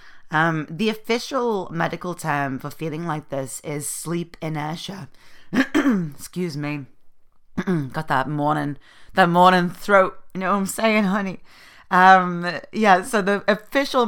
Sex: female